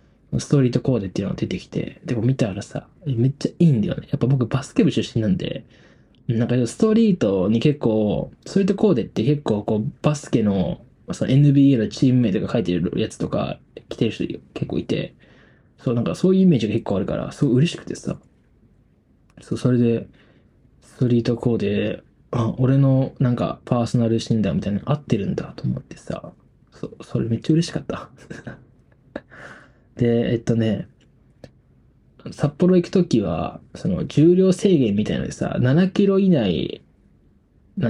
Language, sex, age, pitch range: Japanese, male, 20-39, 120-170 Hz